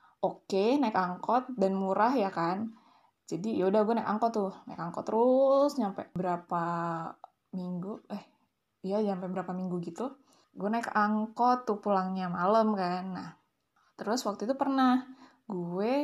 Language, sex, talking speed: Indonesian, female, 145 wpm